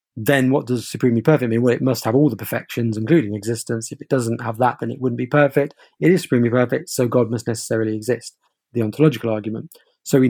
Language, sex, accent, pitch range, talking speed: English, male, British, 115-145 Hz, 225 wpm